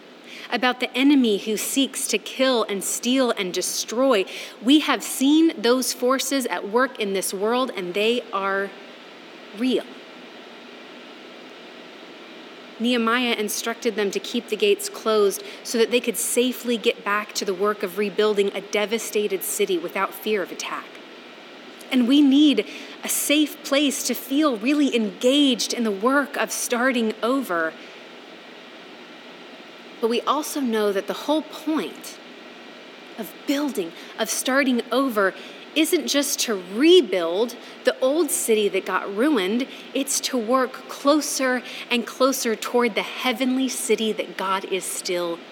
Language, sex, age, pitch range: English, female, 30-49, 200-265 Hz